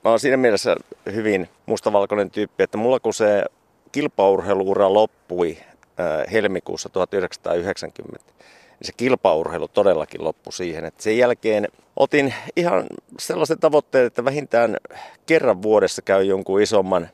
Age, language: 30-49, Finnish